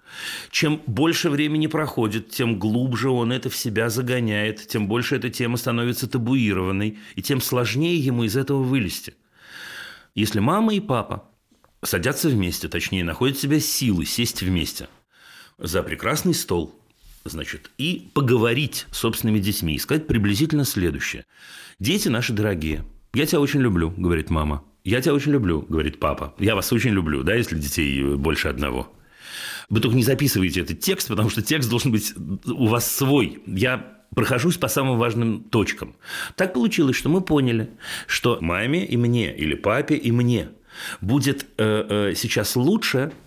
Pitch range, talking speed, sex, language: 100-135 Hz, 155 wpm, male, Russian